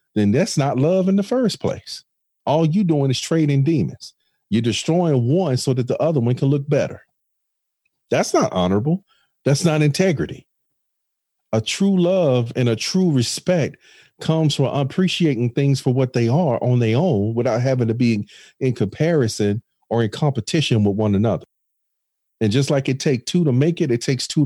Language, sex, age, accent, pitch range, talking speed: English, male, 40-59, American, 115-150 Hz, 180 wpm